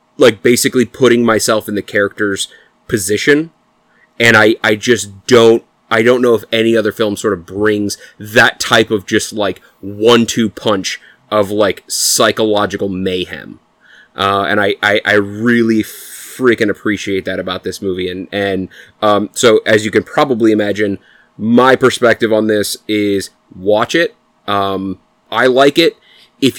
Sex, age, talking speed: male, 30-49, 155 wpm